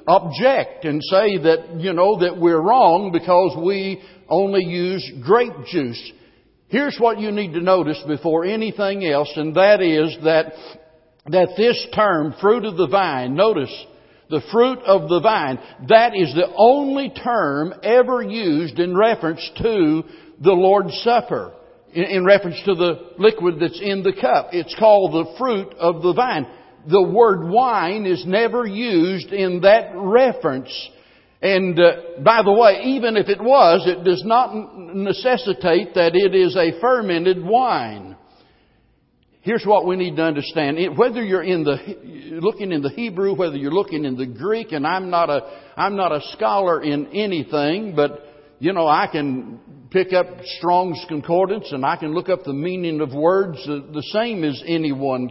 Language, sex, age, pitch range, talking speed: English, male, 60-79, 160-205 Hz, 165 wpm